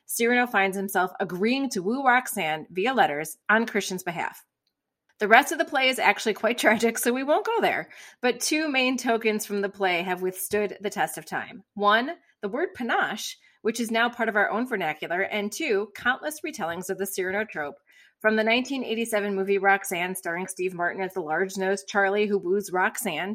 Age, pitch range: 30-49, 185-230 Hz